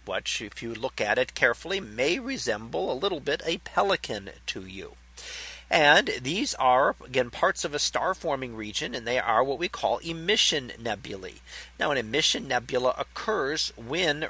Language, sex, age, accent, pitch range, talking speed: English, male, 40-59, American, 120-165 Hz, 170 wpm